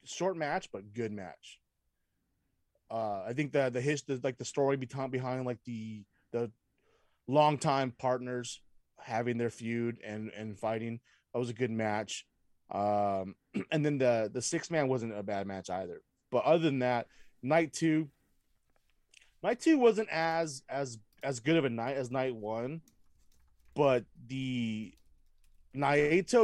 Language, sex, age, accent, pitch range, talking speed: English, male, 20-39, American, 110-145 Hz, 150 wpm